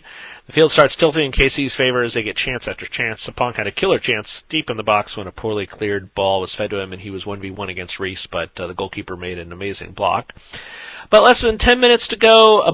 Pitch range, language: 105-150 Hz, English